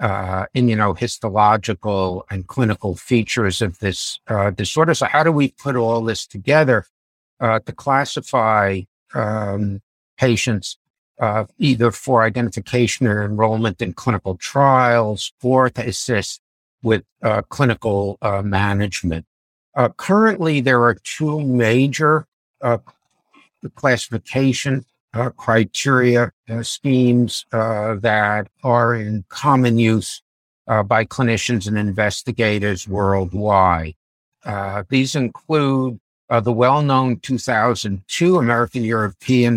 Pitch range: 105-130 Hz